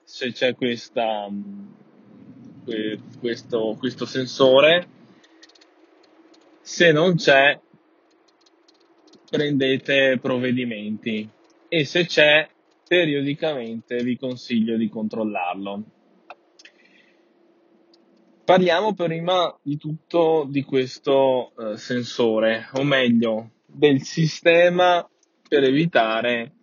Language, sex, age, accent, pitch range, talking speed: Italian, male, 20-39, native, 120-160 Hz, 70 wpm